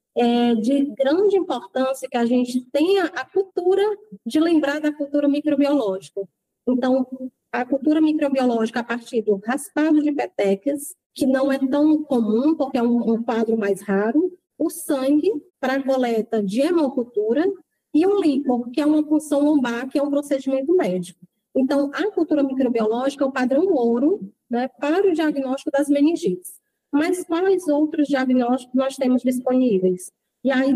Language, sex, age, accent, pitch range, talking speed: Portuguese, female, 20-39, Brazilian, 240-300 Hz, 150 wpm